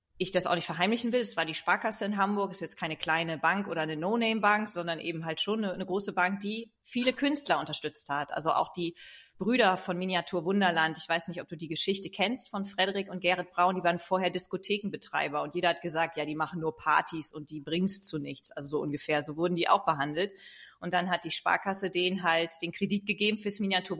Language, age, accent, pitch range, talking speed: German, 30-49, German, 165-200 Hz, 235 wpm